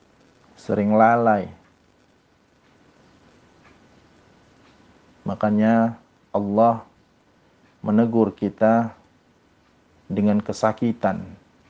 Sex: male